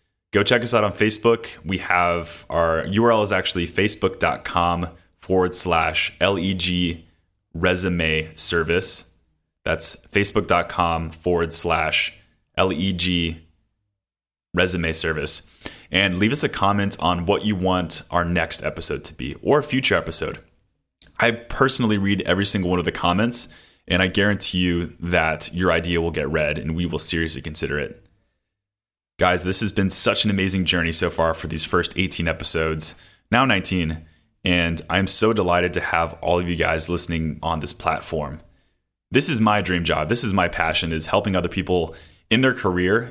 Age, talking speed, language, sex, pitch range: 20-39, 165 wpm, English, male, 85-100 Hz